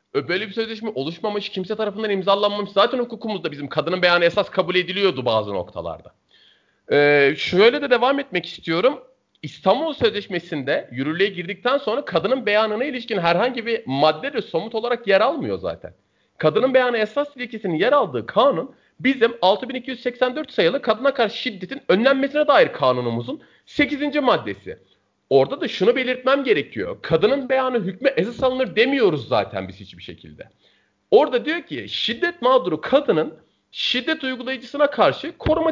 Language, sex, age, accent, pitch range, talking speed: Turkish, male, 40-59, native, 180-265 Hz, 140 wpm